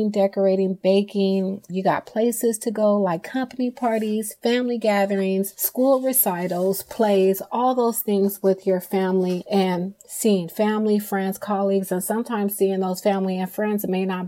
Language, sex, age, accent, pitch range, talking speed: English, female, 30-49, American, 185-205 Hz, 145 wpm